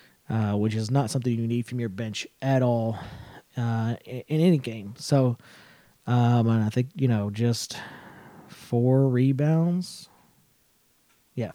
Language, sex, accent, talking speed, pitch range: English, male, American, 145 wpm, 115-135 Hz